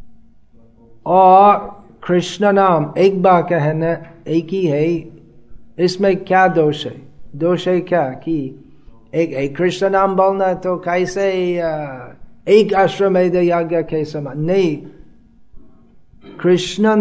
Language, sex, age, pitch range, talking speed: Hindi, male, 30-49, 155-190 Hz, 100 wpm